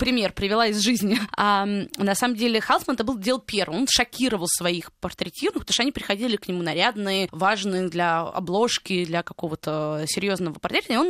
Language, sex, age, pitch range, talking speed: Russian, female, 20-39, 195-250 Hz, 180 wpm